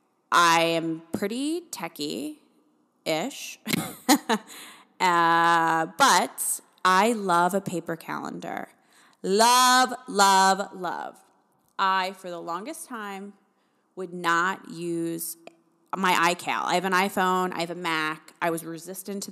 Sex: female